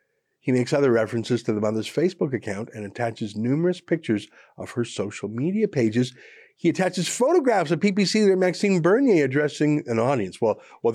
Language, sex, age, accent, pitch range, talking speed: English, male, 50-69, American, 115-170 Hz, 170 wpm